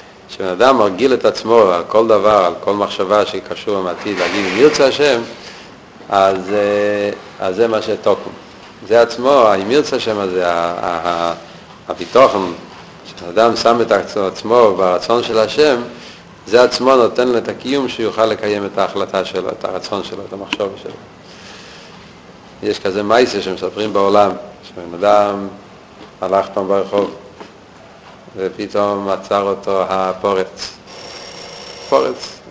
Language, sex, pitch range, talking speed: Hebrew, male, 95-115 Hz, 120 wpm